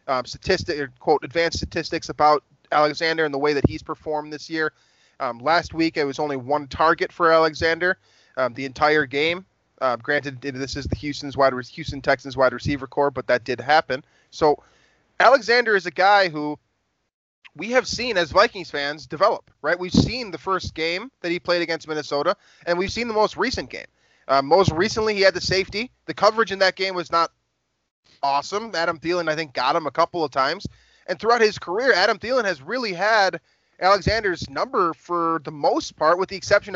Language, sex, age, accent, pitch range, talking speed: English, male, 20-39, American, 140-185 Hz, 200 wpm